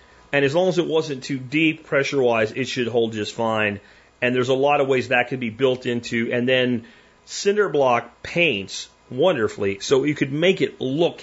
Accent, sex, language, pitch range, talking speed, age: American, male, English, 115-155 Hz, 200 wpm, 40-59